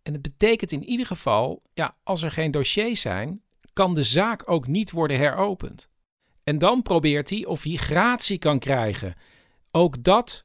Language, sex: Dutch, male